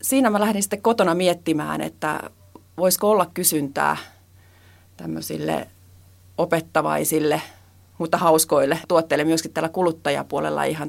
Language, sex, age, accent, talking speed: Finnish, female, 30-49, native, 105 wpm